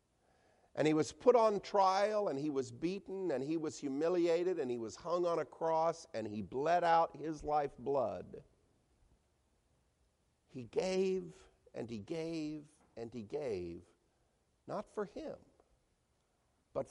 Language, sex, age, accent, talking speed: English, male, 50-69, American, 140 wpm